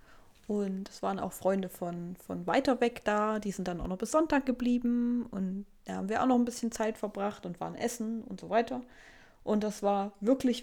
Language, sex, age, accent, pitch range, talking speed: German, female, 20-39, German, 195-245 Hz, 215 wpm